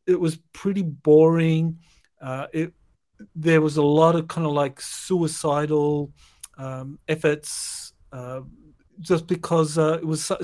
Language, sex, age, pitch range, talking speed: English, male, 50-69, 145-170 Hz, 140 wpm